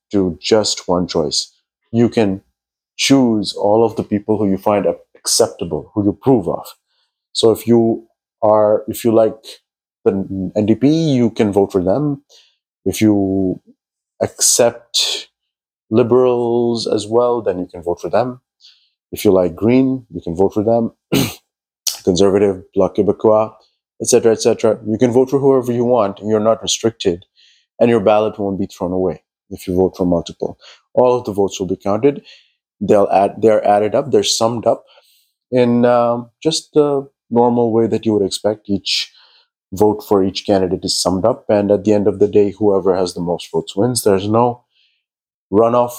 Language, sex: English, male